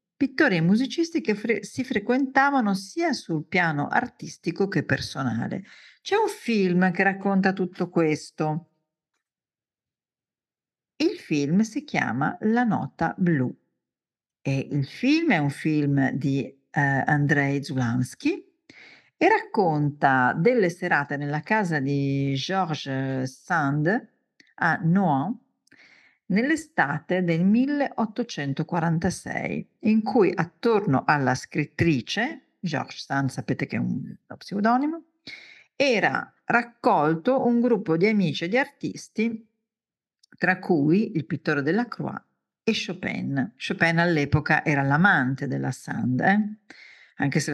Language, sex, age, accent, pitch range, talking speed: Italian, female, 50-69, native, 145-235 Hz, 110 wpm